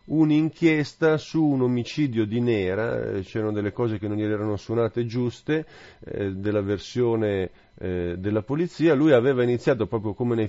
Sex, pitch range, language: male, 110-150 Hz, Italian